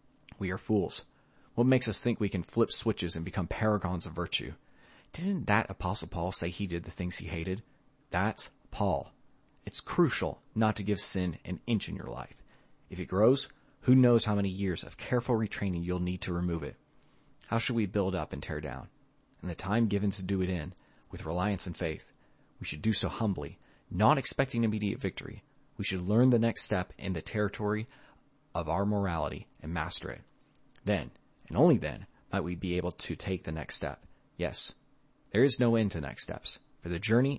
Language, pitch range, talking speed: English, 90-115 Hz, 200 wpm